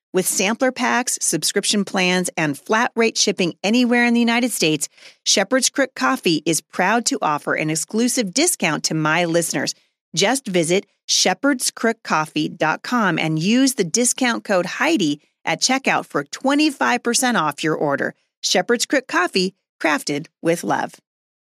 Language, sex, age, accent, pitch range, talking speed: English, female, 40-59, American, 175-235 Hz, 140 wpm